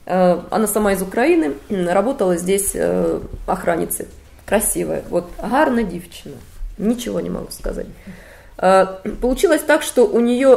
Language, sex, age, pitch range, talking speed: Russian, female, 20-39, 185-255 Hz, 125 wpm